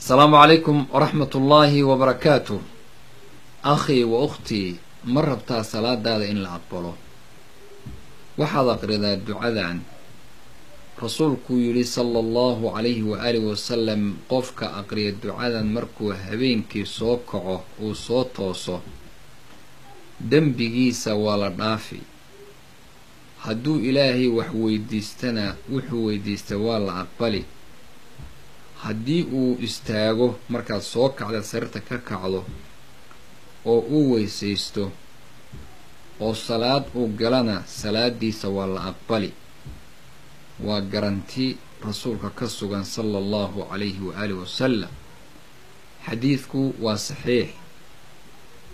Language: Arabic